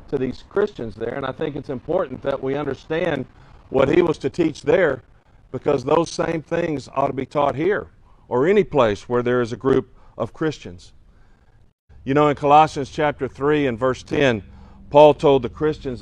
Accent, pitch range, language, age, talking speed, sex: American, 115-155 Hz, English, 50-69, 185 wpm, male